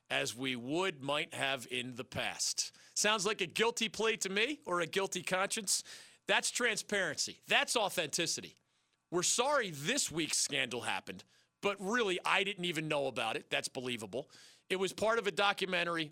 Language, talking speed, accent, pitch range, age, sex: English, 170 wpm, American, 145-205 Hz, 40-59, male